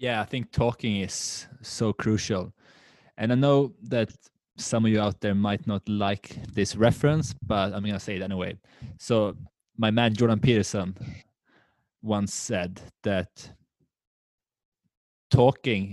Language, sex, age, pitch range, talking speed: English, male, 20-39, 100-115 Hz, 140 wpm